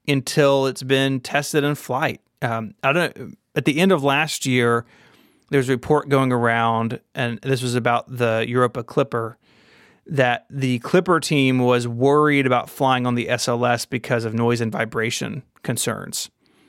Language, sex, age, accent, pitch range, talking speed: English, male, 30-49, American, 120-150 Hz, 160 wpm